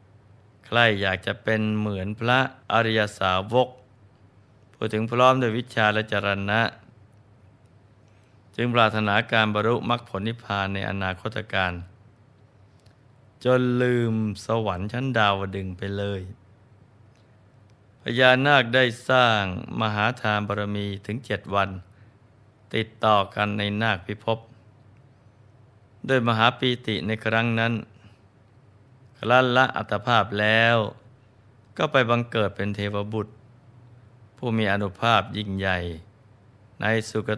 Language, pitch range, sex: Thai, 105-120 Hz, male